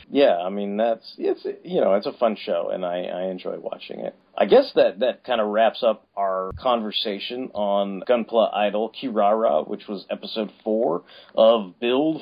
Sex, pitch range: male, 95-120 Hz